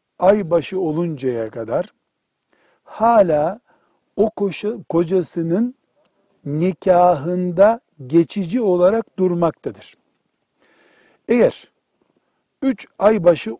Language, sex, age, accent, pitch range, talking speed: Turkish, male, 60-79, native, 150-205 Hz, 55 wpm